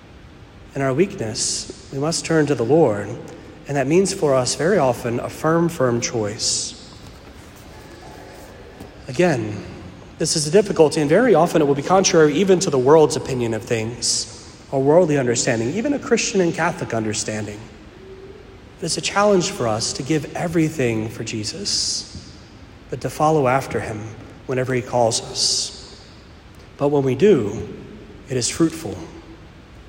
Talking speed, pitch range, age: 150 wpm, 115-155 Hz, 40-59